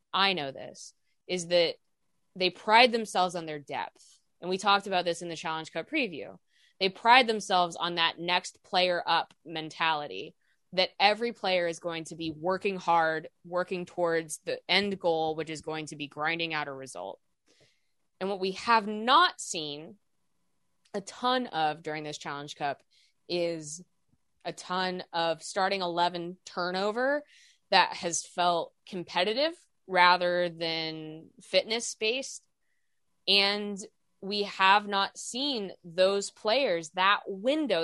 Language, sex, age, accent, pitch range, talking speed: English, female, 20-39, American, 165-200 Hz, 140 wpm